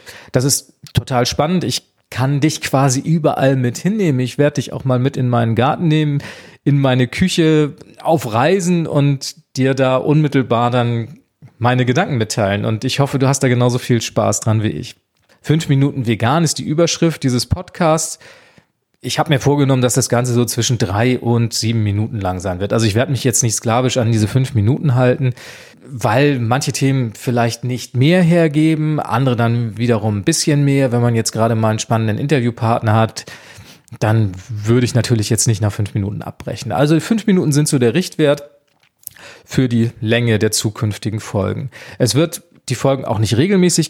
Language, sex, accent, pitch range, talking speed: German, male, German, 115-140 Hz, 180 wpm